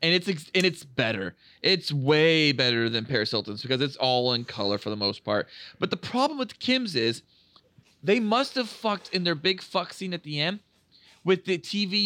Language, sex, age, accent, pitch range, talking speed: English, male, 30-49, American, 150-230 Hz, 215 wpm